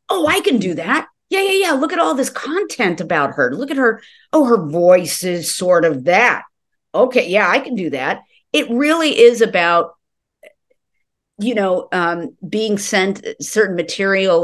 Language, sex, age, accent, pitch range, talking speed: English, female, 50-69, American, 155-230 Hz, 175 wpm